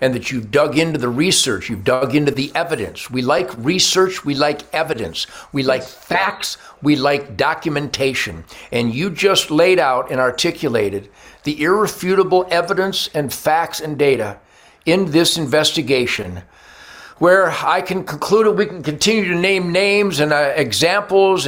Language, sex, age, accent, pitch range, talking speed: English, male, 60-79, American, 135-175 Hz, 150 wpm